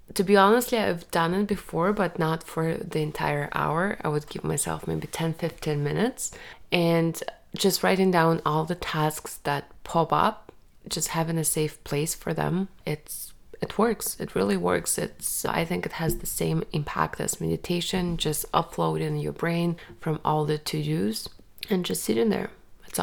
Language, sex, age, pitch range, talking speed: English, female, 20-39, 150-180 Hz, 175 wpm